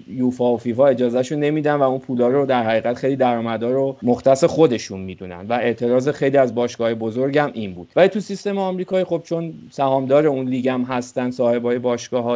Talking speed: 180 wpm